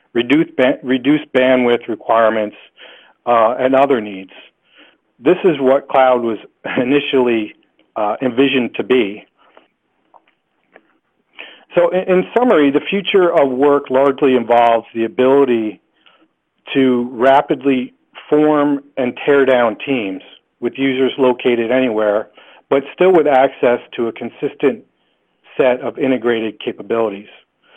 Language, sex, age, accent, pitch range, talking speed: English, male, 40-59, American, 115-140 Hz, 110 wpm